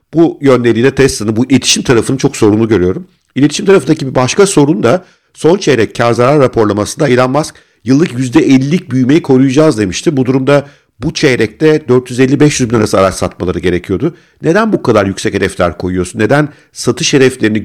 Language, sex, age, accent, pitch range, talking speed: Turkish, male, 50-69, native, 105-145 Hz, 155 wpm